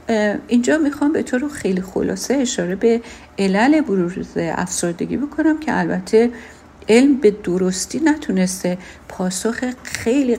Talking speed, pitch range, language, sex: 120 wpm, 185-240 Hz, Persian, female